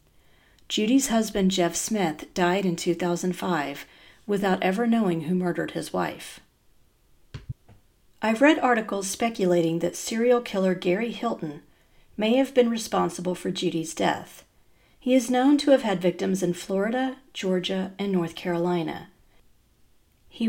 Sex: female